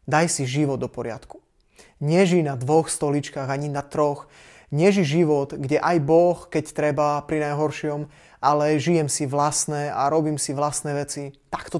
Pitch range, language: 135-155 Hz, Slovak